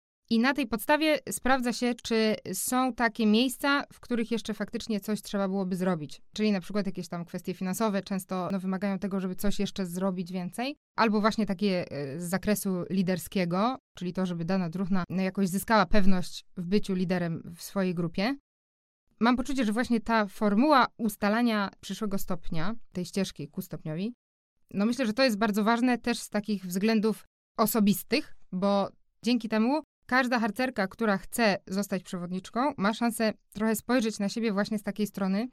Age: 20-39